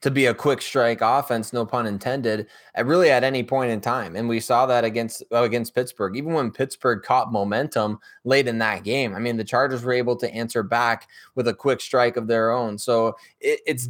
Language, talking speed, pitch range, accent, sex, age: English, 225 wpm, 115-130 Hz, American, male, 20-39